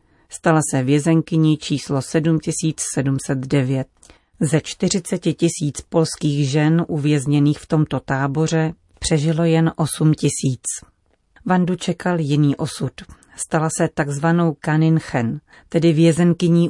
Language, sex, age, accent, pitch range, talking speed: Czech, female, 40-59, native, 140-165 Hz, 100 wpm